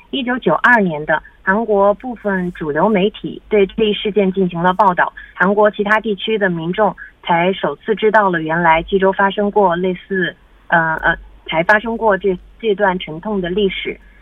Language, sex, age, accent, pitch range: Korean, female, 30-49, Chinese, 180-220 Hz